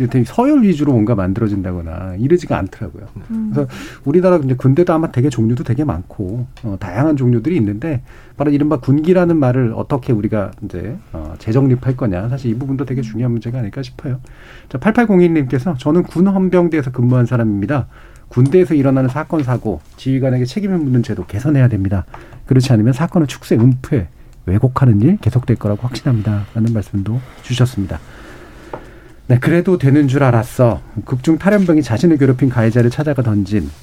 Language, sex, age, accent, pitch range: Korean, male, 40-59, native, 115-150 Hz